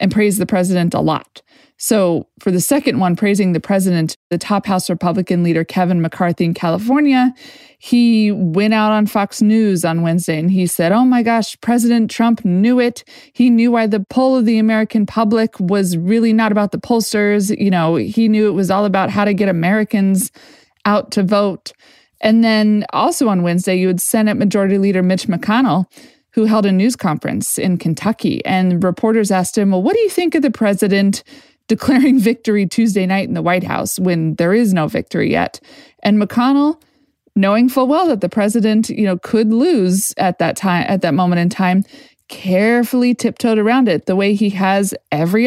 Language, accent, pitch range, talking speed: English, American, 185-230 Hz, 190 wpm